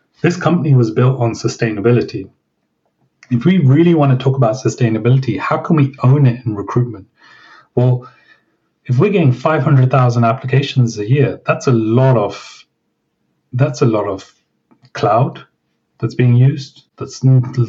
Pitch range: 115-135 Hz